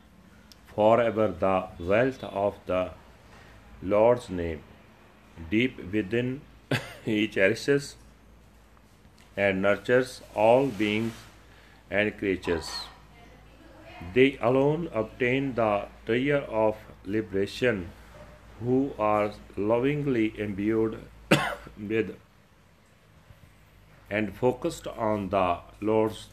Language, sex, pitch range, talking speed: Punjabi, male, 100-125 Hz, 75 wpm